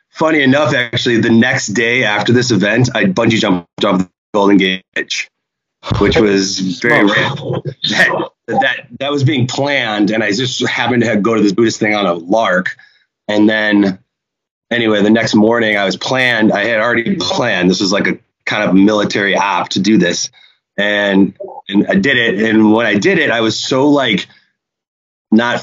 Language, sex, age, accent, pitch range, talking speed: English, male, 30-49, American, 100-125 Hz, 185 wpm